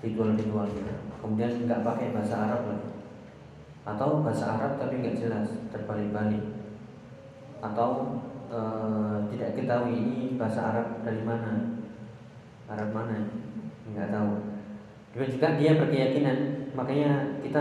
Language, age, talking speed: Indonesian, 20-39, 110 wpm